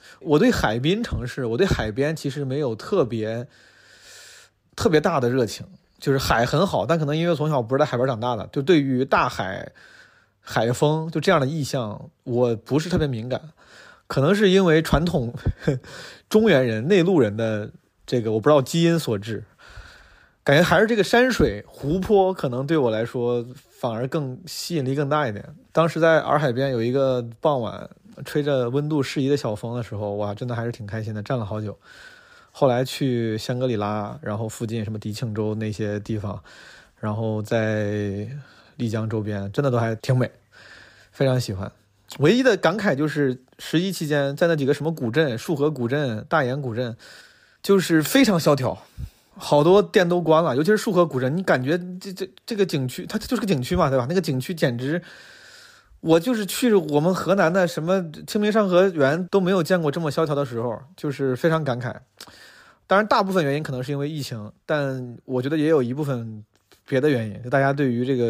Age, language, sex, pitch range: 20-39, Chinese, male, 120-170 Hz